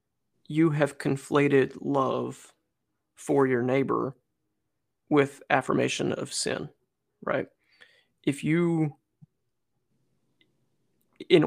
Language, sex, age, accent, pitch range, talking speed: English, male, 30-49, American, 135-155 Hz, 80 wpm